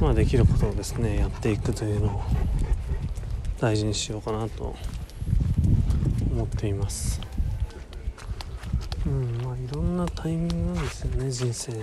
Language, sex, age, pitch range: Japanese, male, 40-59, 100-130 Hz